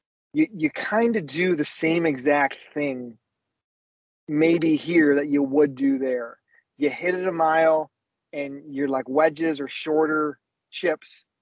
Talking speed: 145 wpm